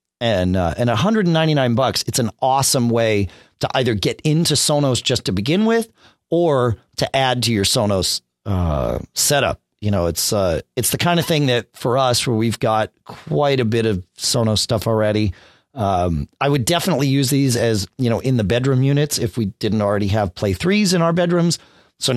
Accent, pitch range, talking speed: American, 100-160 Hz, 195 wpm